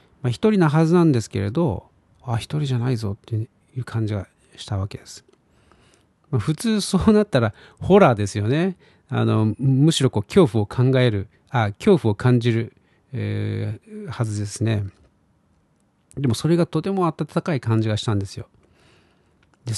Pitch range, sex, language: 105-135 Hz, male, Japanese